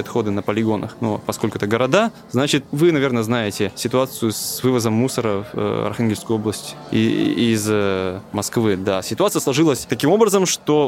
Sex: male